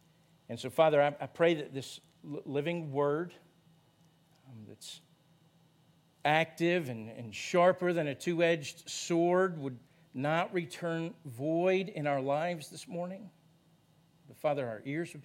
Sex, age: male, 50-69